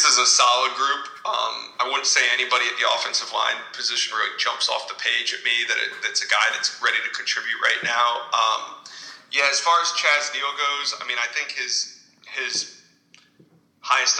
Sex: male